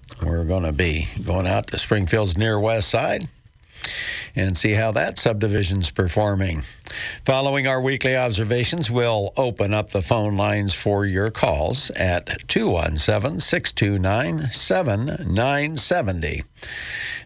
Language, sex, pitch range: English, male, 95-120 Hz